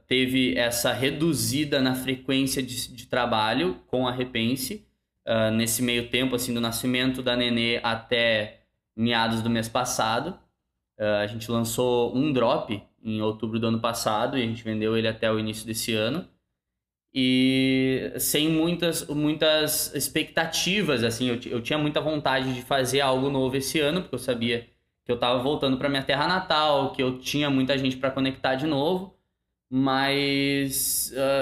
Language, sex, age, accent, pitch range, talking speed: Portuguese, male, 20-39, Brazilian, 120-140 Hz, 160 wpm